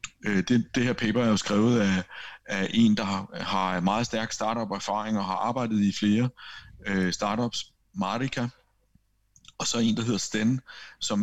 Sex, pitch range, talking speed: male, 100-120 Hz, 165 wpm